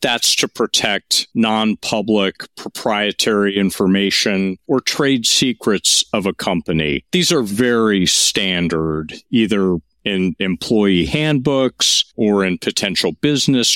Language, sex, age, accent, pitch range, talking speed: English, male, 50-69, American, 95-115 Hz, 105 wpm